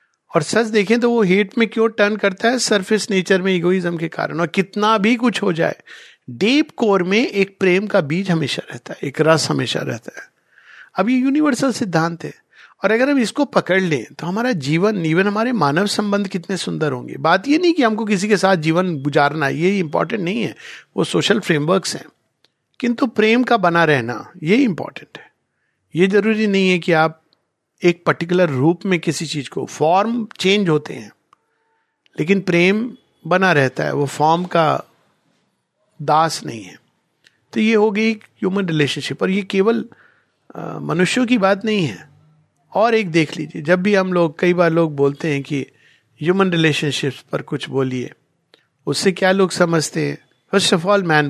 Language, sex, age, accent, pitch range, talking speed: Hindi, male, 50-69, native, 155-210 Hz, 180 wpm